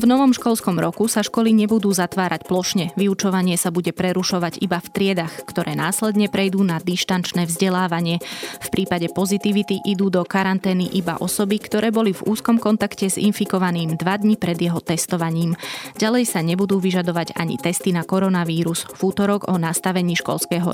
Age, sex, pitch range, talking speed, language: 20-39, female, 170-195 Hz, 155 wpm, Slovak